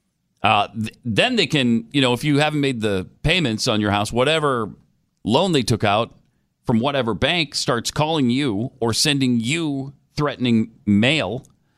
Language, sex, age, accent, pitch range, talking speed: English, male, 40-59, American, 105-140 Hz, 160 wpm